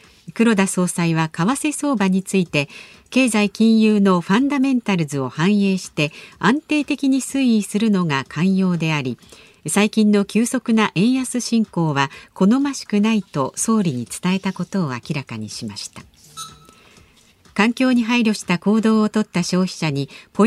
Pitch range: 160-230 Hz